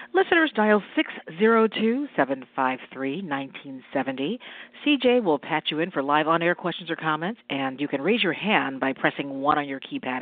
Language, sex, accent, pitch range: English, female, American, 135-165 Hz